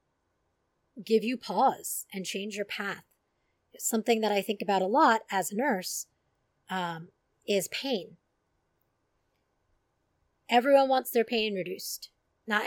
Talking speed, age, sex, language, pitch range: 125 wpm, 30-49, female, English, 175-220 Hz